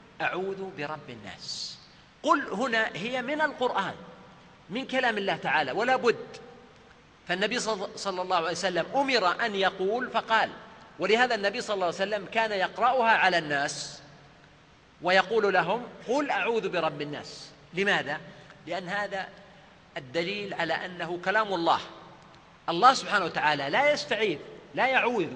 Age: 40-59